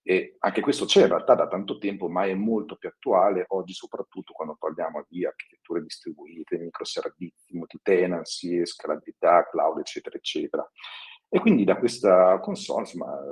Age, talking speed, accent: 50-69, 155 wpm, native